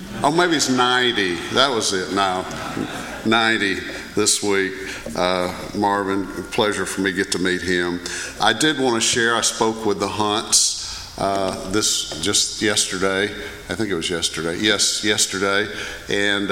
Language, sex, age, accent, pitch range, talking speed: English, male, 50-69, American, 95-110 Hz, 155 wpm